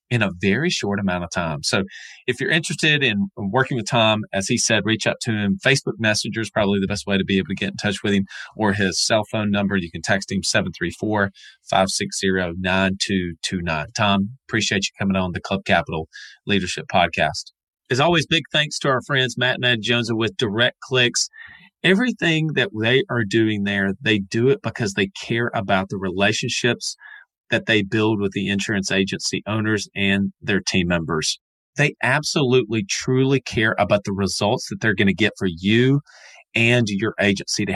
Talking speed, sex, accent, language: 185 wpm, male, American, English